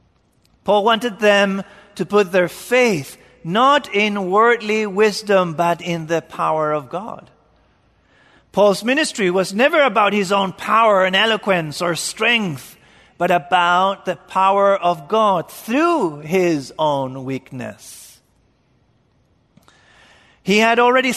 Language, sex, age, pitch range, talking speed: English, male, 40-59, 170-235 Hz, 120 wpm